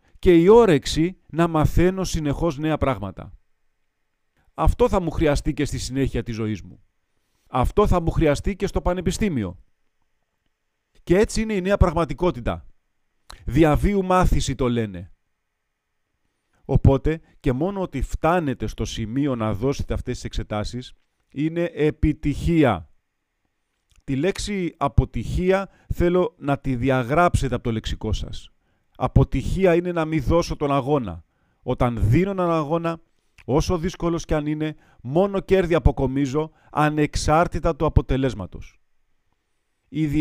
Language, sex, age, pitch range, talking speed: Greek, male, 40-59, 115-160 Hz, 125 wpm